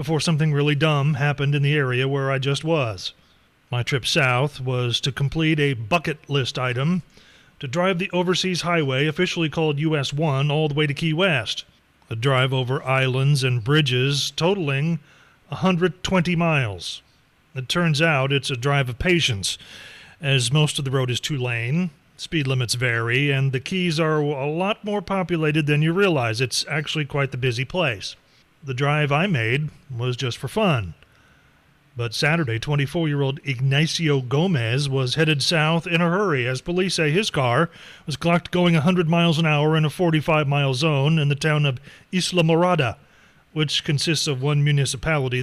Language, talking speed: English, 170 wpm